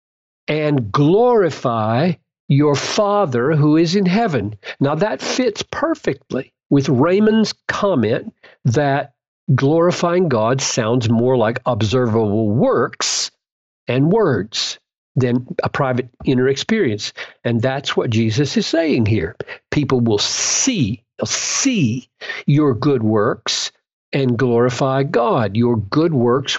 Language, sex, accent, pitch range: English, male, American, 125-165 Hz